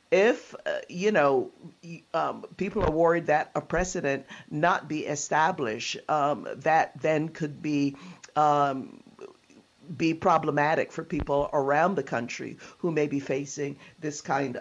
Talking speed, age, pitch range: 135 wpm, 50-69, 145-170 Hz